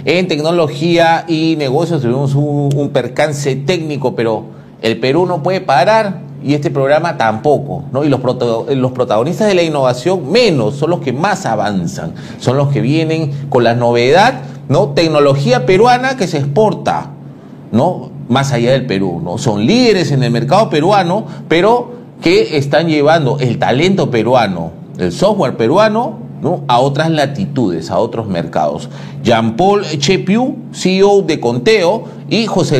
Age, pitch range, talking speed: 40-59, 130-170 Hz, 150 wpm